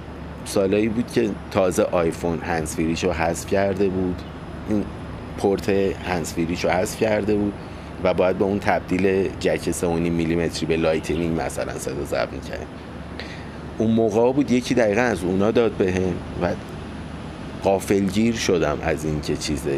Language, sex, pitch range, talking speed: Persian, male, 80-100 Hz, 140 wpm